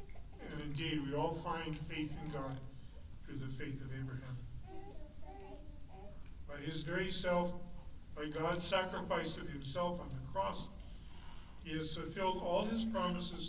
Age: 50-69